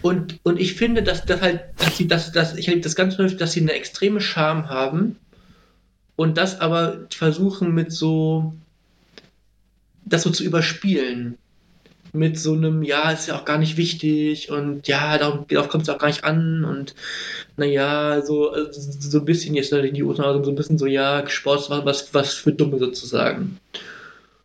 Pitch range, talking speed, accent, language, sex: 145-170 Hz, 175 wpm, German, German, male